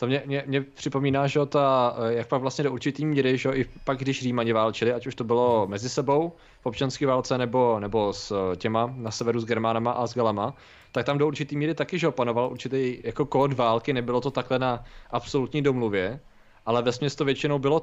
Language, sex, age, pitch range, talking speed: Czech, male, 20-39, 120-135 Hz, 210 wpm